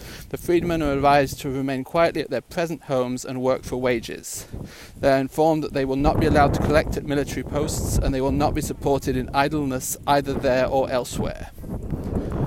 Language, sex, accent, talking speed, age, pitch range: English, male, British, 195 wpm, 30-49, 130-150 Hz